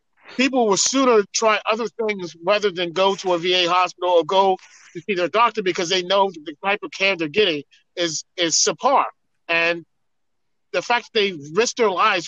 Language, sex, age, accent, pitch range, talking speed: English, male, 40-59, American, 175-240 Hz, 190 wpm